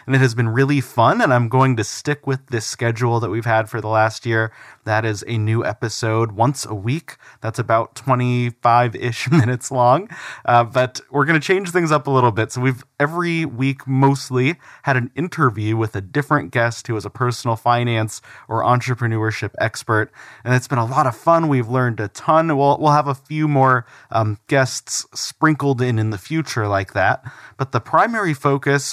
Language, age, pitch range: English, 30-49, 115-140 Hz